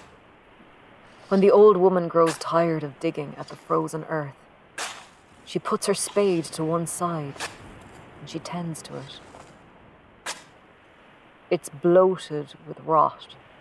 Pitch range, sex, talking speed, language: 150-175 Hz, female, 125 wpm, English